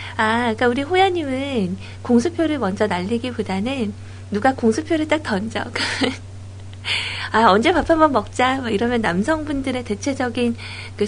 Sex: female